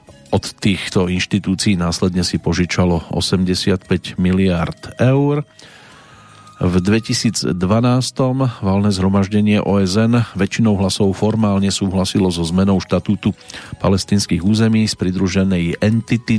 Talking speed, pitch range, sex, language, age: 95 wpm, 90-110 Hz, male, Slovak, 40-59